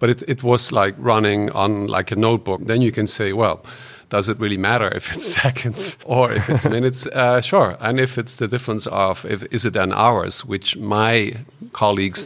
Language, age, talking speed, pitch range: English, 50-69, 205 wpm, 100-120 Hz